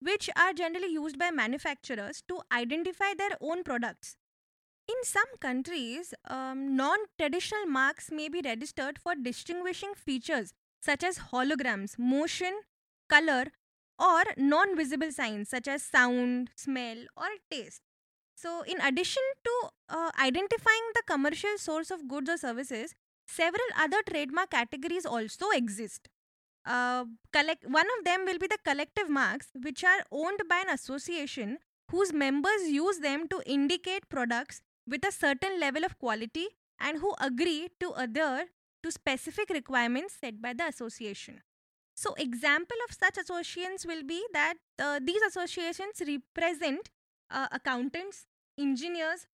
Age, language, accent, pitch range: 20-39, English, Indian, 270-360 Hz